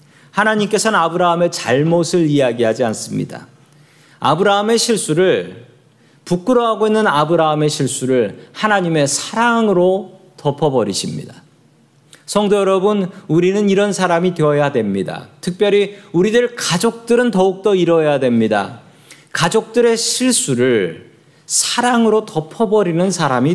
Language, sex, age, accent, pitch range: Korean, male, 40-59, native, 145-200 Hz